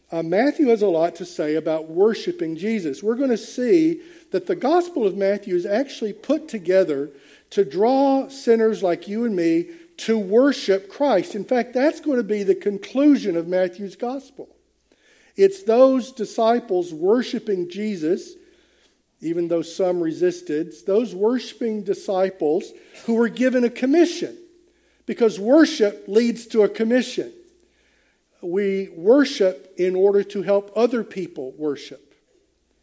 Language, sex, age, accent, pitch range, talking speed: English, male, 50-69, American, 185-275 Hz, 140 wpm